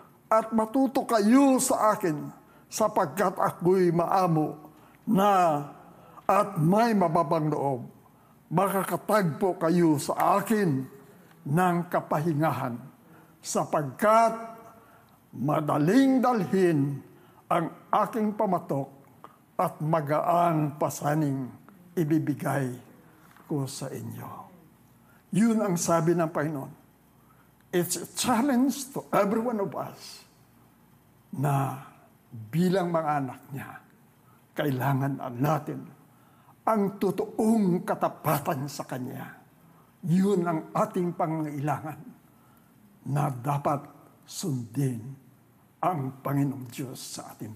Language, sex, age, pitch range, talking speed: English, male, 50-69, 140-205 Hz, 85 wpm